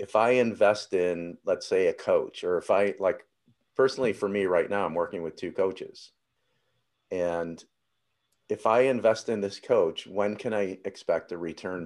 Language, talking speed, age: English, 175 wpm, 40-59